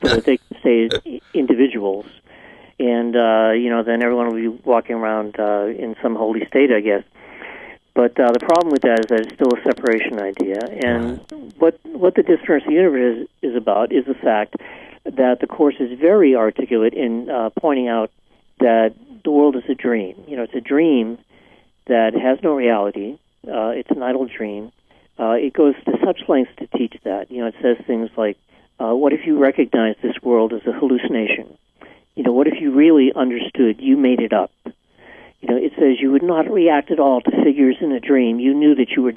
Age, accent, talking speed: 50-69, American, 200 wpm